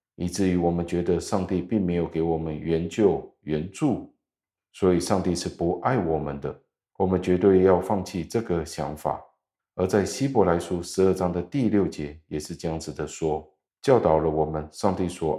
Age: 50-69